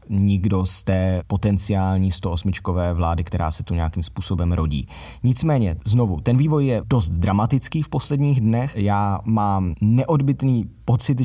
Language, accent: Czech, native